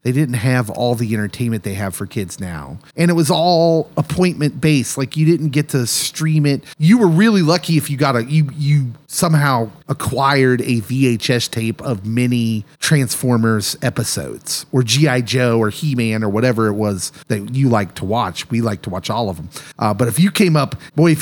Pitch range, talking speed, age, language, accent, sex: 115-160 Hz, 205 wpm, 30-49, English, American, male